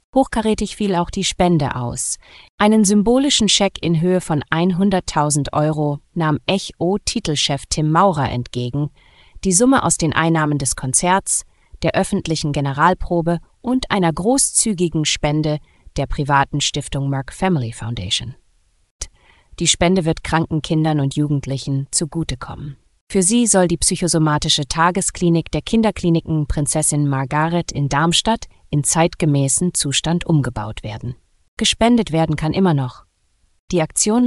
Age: 30-49